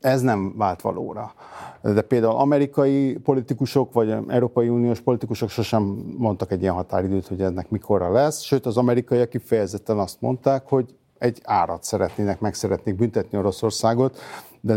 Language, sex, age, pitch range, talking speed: Hungarian, male, 50-69, 110-140 Hz, 150 wpm